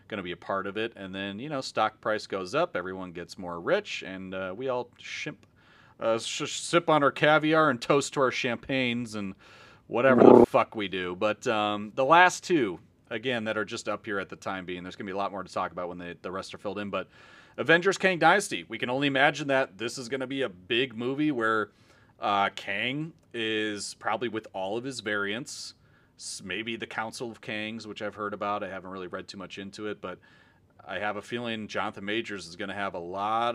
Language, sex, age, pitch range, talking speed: English, male, 30-49, 100-125 Hz, 230 wpm